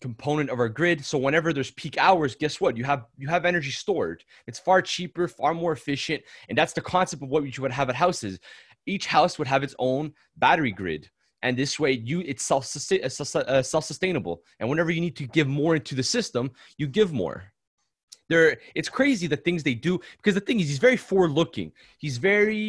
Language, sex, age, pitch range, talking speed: English, male, 20-39, 135-175 Hz, 210 wpm